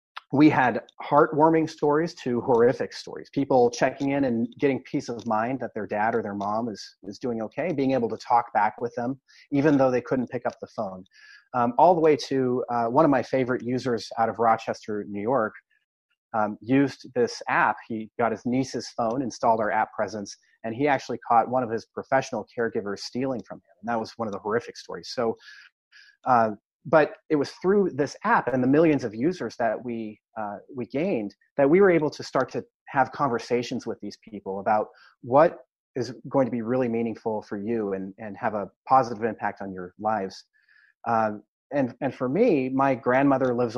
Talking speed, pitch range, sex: 200 wpm, 110-135 Hz, male